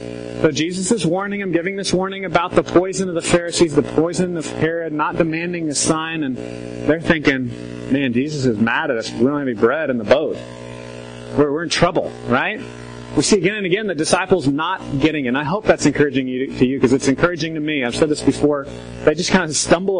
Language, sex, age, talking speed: English, male, 30-49, 225 wpm